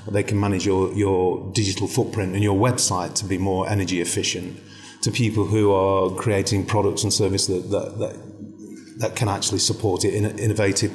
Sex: male